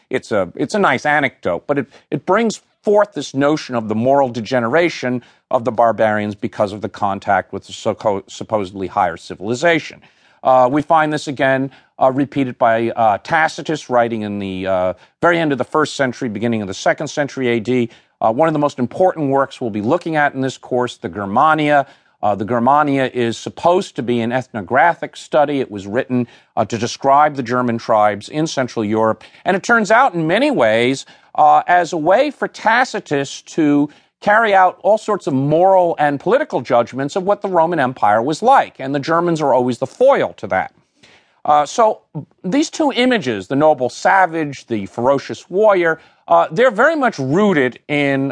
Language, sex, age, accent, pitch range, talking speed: English, male, 50-69, American, 125-170 Hz, 185 wpm